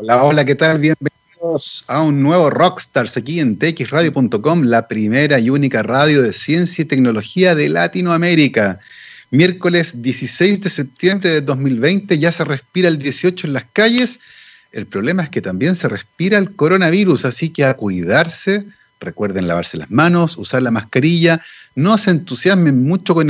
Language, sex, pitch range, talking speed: Spanish, male, 130-185 Hz, 160 wpm